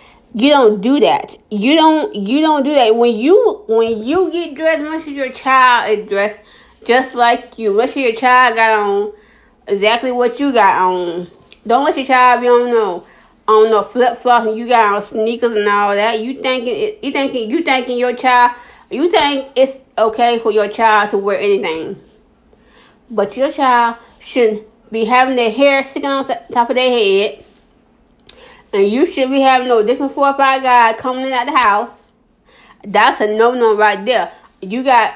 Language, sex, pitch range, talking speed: English, female, 225-265 Hz, 190 wpm